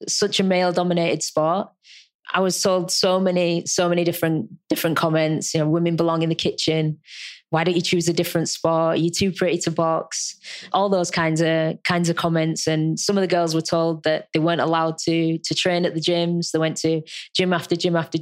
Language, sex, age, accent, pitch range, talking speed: English, female, 20-39, British, 165-185 Hz, 210 wpm